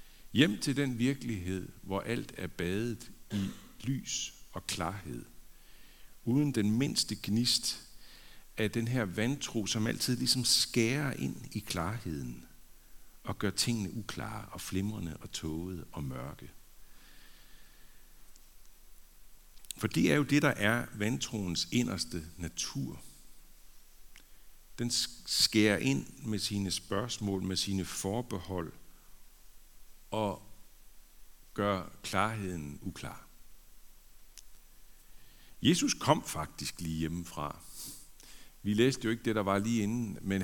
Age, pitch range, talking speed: 60-79, 95-120 Hz, 110 wpm